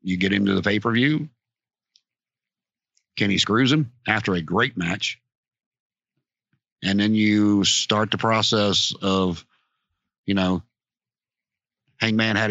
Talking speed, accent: 120 wpm, American